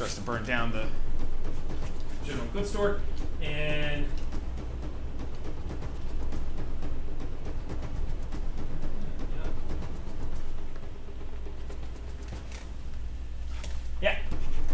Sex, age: male, 30-49